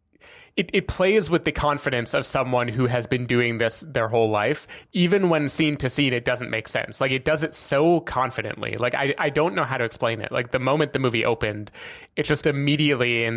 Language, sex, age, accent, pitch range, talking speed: English, male, 20-39, American, 115-150 Hz, 225 wpm